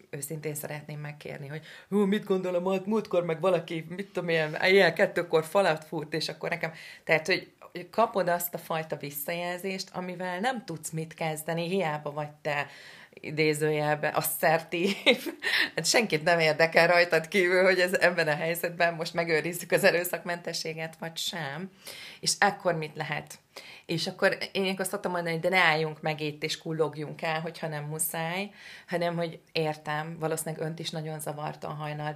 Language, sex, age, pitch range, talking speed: Hungarian, female, 30-49, 150-170 Hz, 155 wpm